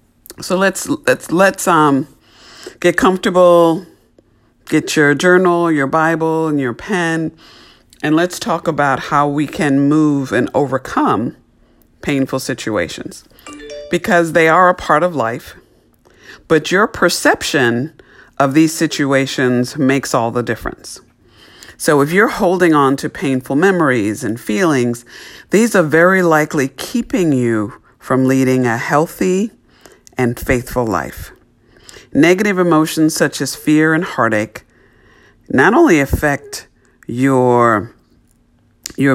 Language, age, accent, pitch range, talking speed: English, 50-69, American, 130-170 Hz, 120 wpm